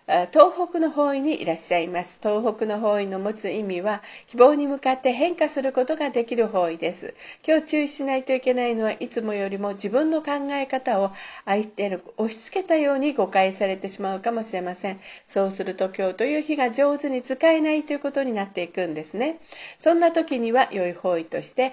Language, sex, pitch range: Japanese, female, 200-275 Hz